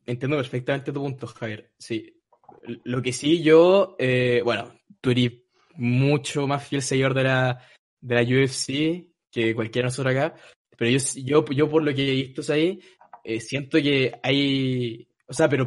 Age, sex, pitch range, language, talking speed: 20-39, male, 130-160 Hz, Spanish, 170 wpm